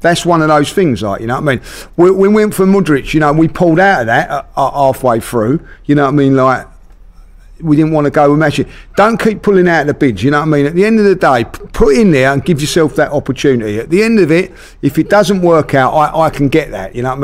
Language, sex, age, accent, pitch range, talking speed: English, male, 50-69, British, 135-180 Hz, 300 wpm